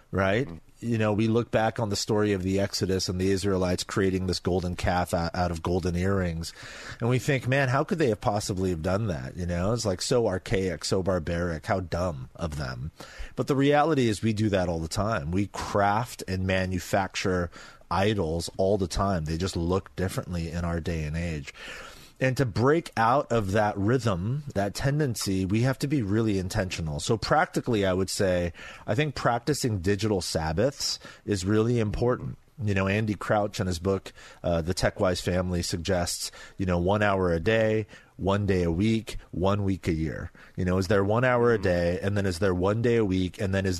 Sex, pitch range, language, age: male, 90-110 Hz, English, 30-49